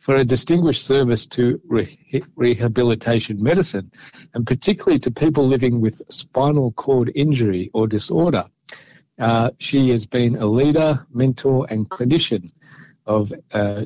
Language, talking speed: Hebrew, 125 wpm